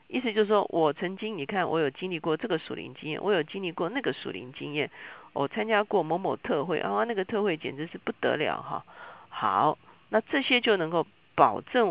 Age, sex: 50-69, female